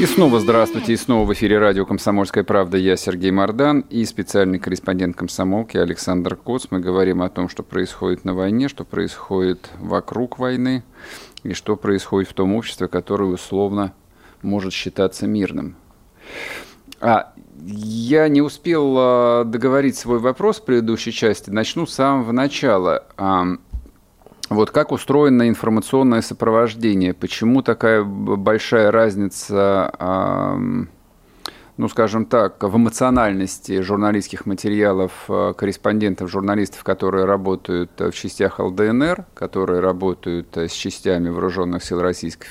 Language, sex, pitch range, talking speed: Russian, male, 90-115 Hz, 120 wpm